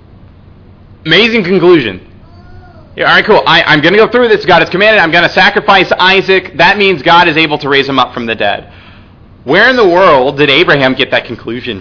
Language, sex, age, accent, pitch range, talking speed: English, male, 30-49, American, 105-160 Hz, 200 wpm